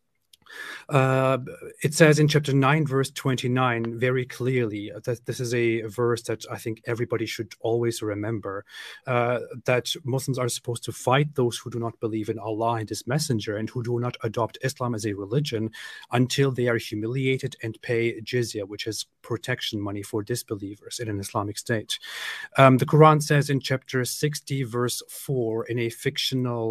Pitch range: 110-125 Hz